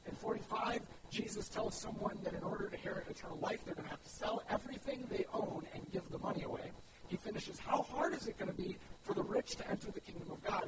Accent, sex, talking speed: American, male, 245 wpm